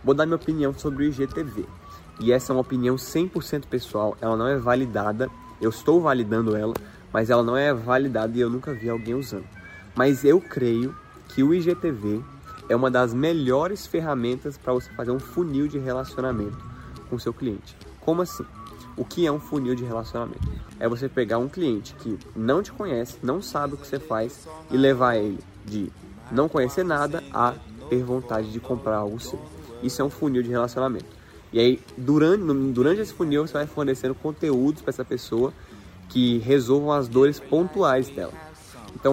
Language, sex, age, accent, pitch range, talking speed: Portuguese, male, 20-39, Brazilian, 115-150 Hz, 180 wpm